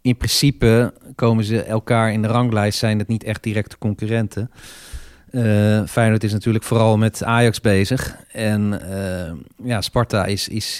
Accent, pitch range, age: Dutch, 105-120 Hz, 40-59